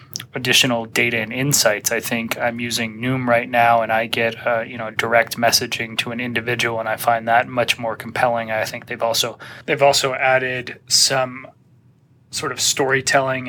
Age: 30-49